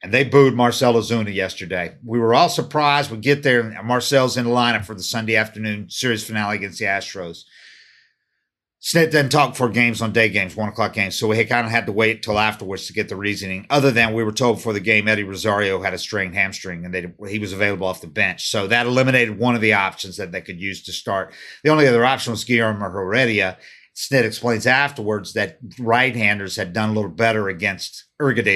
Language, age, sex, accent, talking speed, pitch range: English, 50-69, male, American, 225 wpm, 105-125 Hz